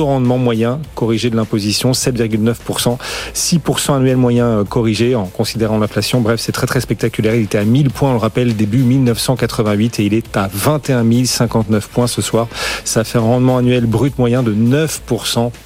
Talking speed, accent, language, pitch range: 175 wpm, French, French, 115-140 Hz